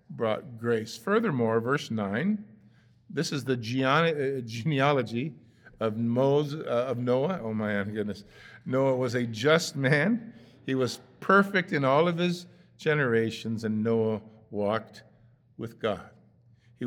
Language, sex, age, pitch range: English, male, 50-69, 115-145 Hz